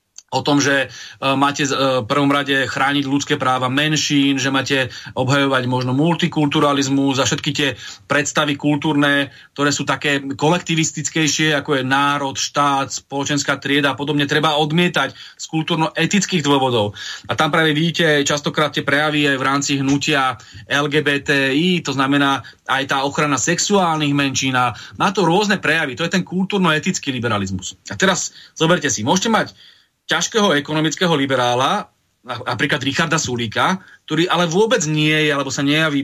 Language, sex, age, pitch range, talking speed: Slovak, male, 30-49, 135-165 Hz, 150 wpm